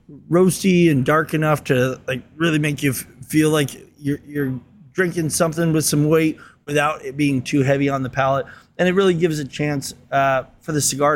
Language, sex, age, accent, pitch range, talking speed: English, male, 20-39, American, 135-170 Hz, 195 wpm